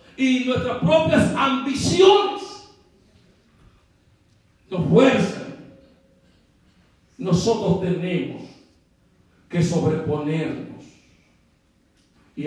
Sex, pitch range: male, 150-195 Hz